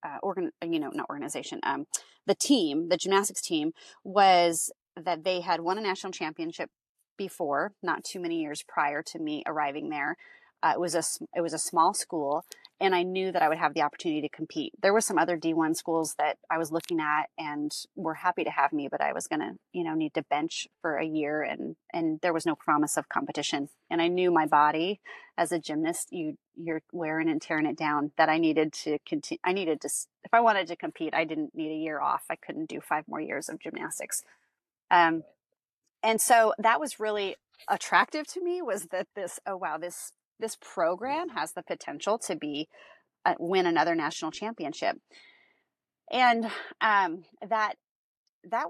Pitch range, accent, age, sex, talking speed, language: 160-215 Hz, American, 30-49, female, 200 wpm, English